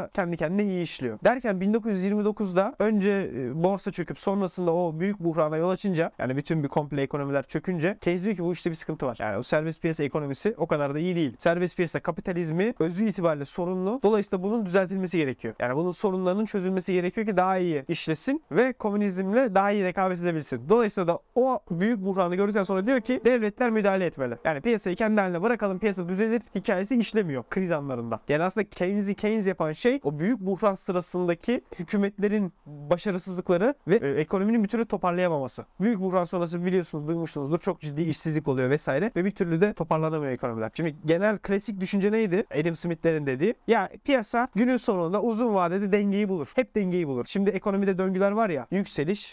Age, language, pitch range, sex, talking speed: 30-49, Turkish, 165-210 Hz, male, 175 wpm